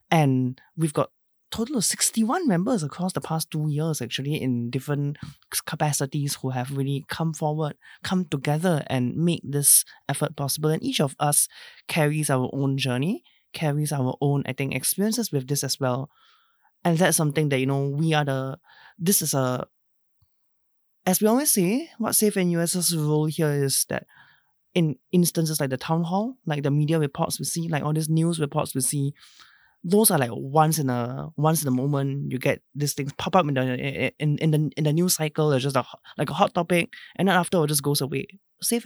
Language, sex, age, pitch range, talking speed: English, male, 20-39, 140-170 Hz, 200 wpm